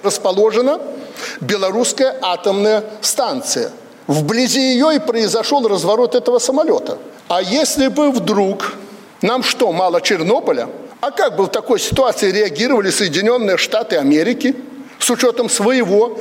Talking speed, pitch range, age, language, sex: 120 wpm, 195-250 Hz, 60-79, Russian, male